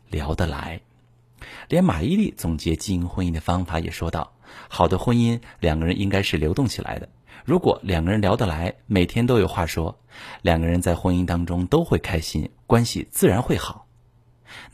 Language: Chinese